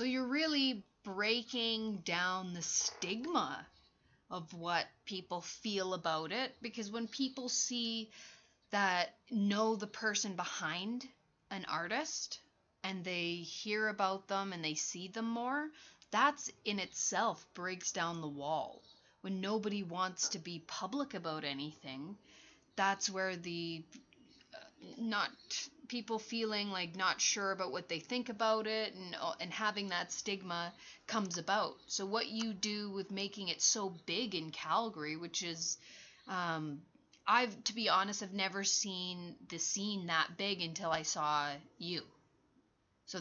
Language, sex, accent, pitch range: English, female, American, 170-220 Hz